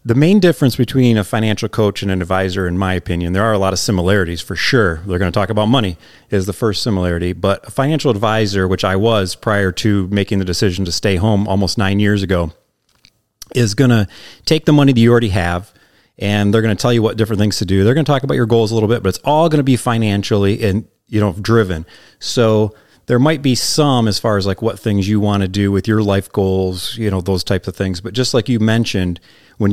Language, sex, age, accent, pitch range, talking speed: English, male, 30-49, American, 95-120 Hz, 250 wpm